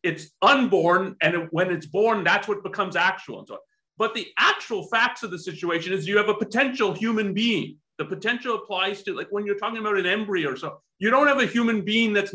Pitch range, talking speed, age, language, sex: 170-230 Hz, 225 wpm, 40-59, English, male